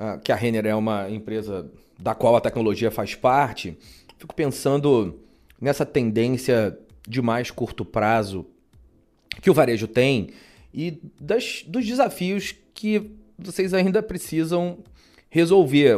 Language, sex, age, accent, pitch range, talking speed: Portuguese, male, 30-49, Brazilian, 120-165 Hz, 120 wpm